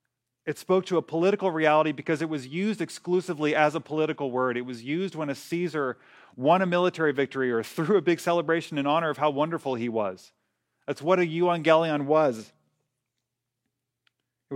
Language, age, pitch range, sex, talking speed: English, 30-49, 120-155 Hz, male, 175 wpm